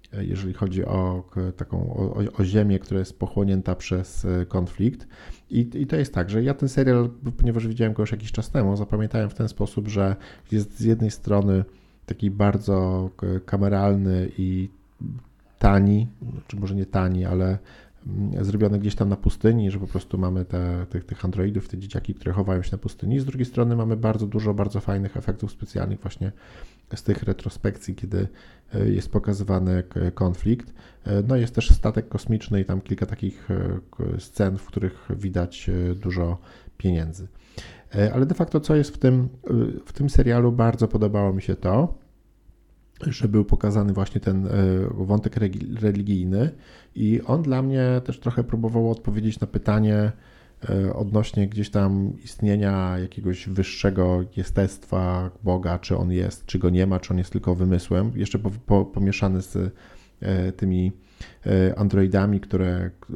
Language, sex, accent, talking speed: Polish, male, native, 150 wpm